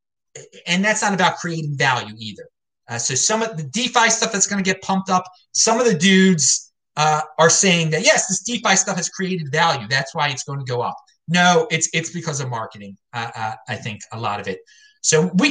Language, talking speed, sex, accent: English, 225 wpm, male, American